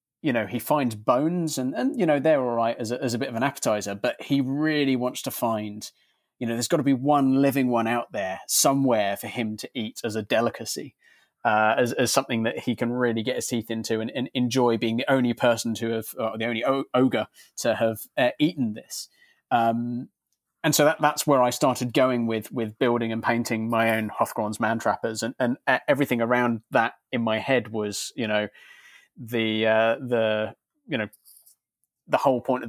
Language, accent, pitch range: English, British, 110-130 Hz